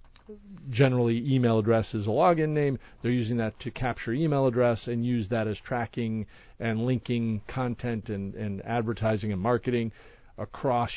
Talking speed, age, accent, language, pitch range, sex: 155 wpm, 40-59, American, English, 105-130 Hz, male